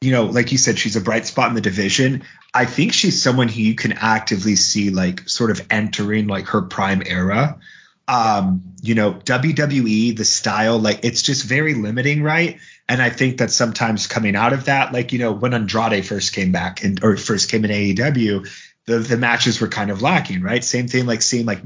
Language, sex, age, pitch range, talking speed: English, male, 30-49, 105-130 Hz, 215 wpm